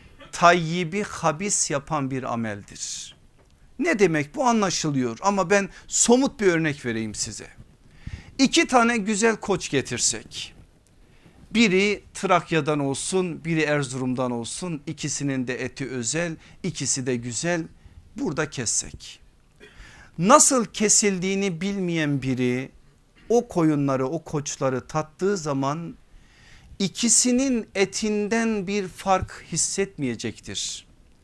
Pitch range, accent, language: 150-205 Hz, native, Turkish